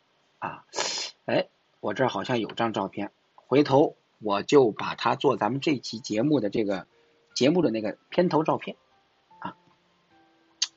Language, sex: Chinese, male